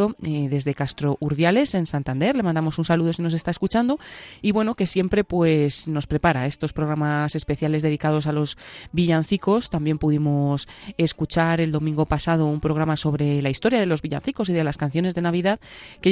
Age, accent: 20-39, Spanish